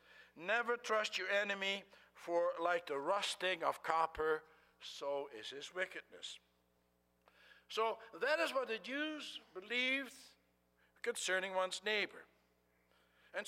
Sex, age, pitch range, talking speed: male, 60-79, 140-240 Hz, 110 wpm